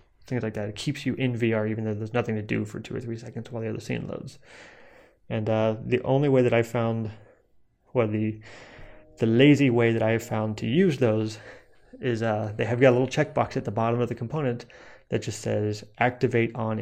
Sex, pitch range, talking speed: male, 110-125 Hz, 220 wpm